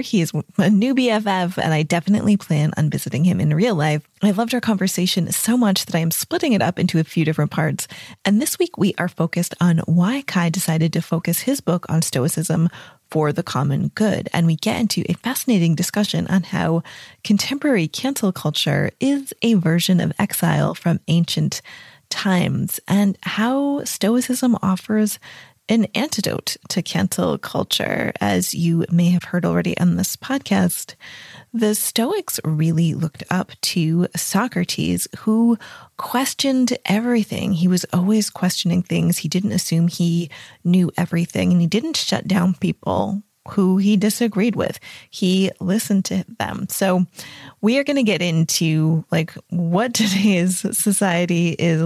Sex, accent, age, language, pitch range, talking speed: female, American, 20-39, English, 165-210 Hz, 160 wpm